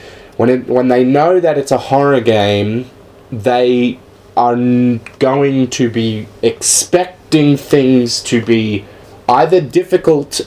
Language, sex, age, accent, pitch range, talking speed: English, male, 20-39, Australian, 105-140 Hz, 120 wpm